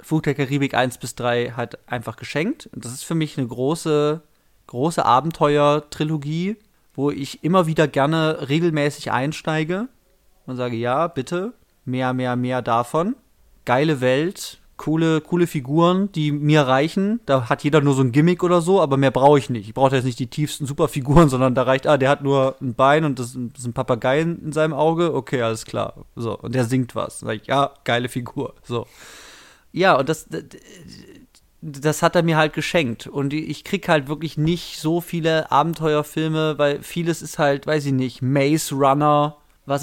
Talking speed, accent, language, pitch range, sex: 185 wpm, German, German, 130-160 Hz, male